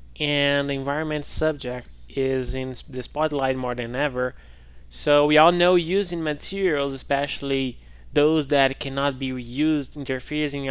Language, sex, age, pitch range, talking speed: English, male, 20-39, 120-145 Hz, 135 wpm